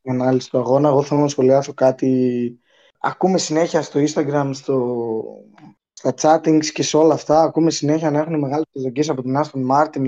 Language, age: Greek, 20-39